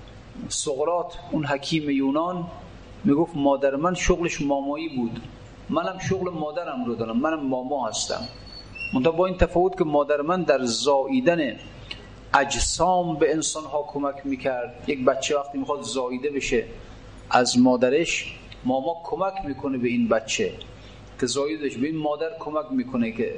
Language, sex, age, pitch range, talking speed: Persian, male, 40-59, 125-175 Hz, 135 wpm